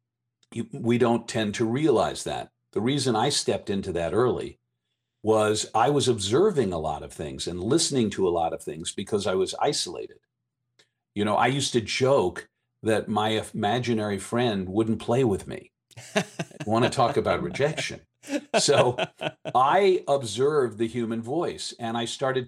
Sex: male